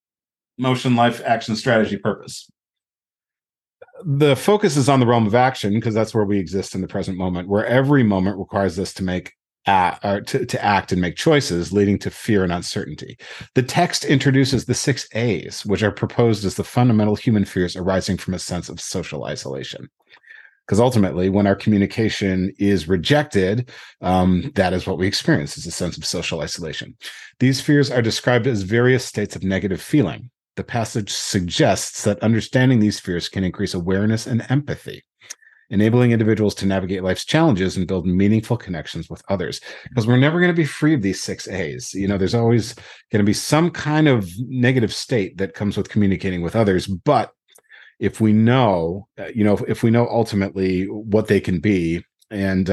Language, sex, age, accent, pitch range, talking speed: English, male, 40-59, American, 95-125 Hz, 180 wpm